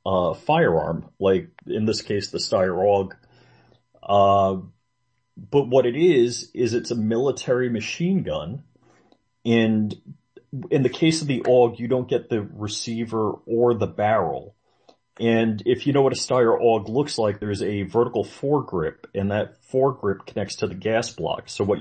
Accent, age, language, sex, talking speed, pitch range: American, 30-49, English, male, 170 wpm, 100-125 Hz